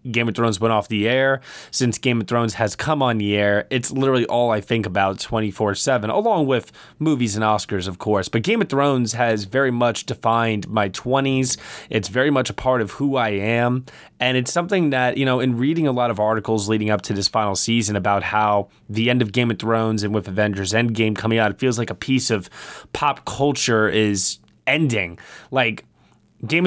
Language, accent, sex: English, American, male